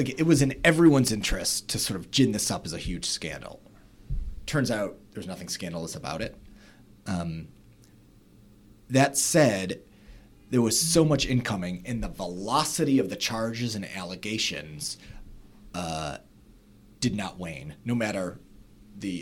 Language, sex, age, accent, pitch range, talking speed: English, male, 30-49, American, 95-125 Hz, 145 wpm